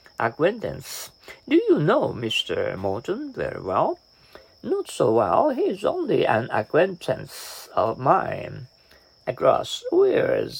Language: Japanese